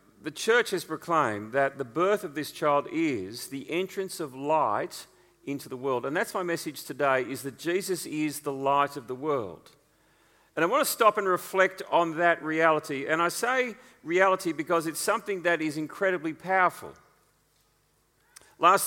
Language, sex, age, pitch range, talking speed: English, male, 40-59, 140-185 Hz, 170 wpm